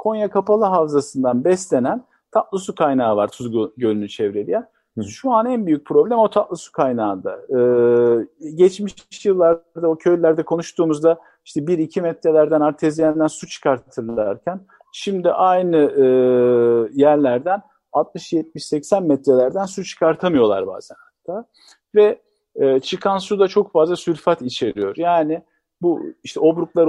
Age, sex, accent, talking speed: 50-69, male, native, 125 wpm